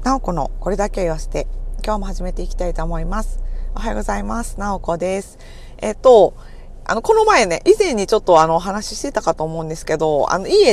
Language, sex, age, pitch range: Japanese, female, 40-59, 160-230 Hz